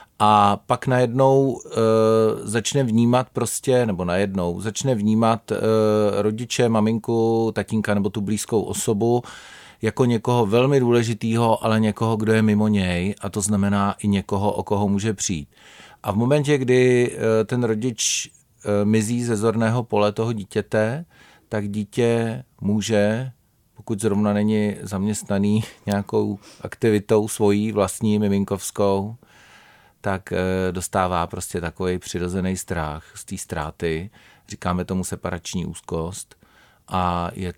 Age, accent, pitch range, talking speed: 40-59, native, 95-110 Hz, 125 wpm